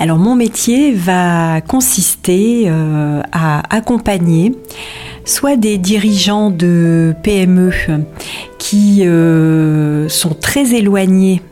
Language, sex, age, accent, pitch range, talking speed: French, female, 40-59, French, 165-205 Hz, 95 wpm